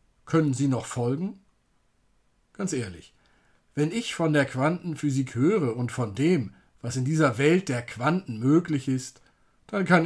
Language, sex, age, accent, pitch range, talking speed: German, male, 50-69, German, 130-175 Hz, 150 wpm